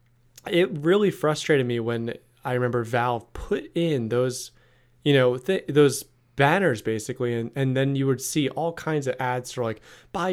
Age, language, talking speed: 20-39, English, 175 wpm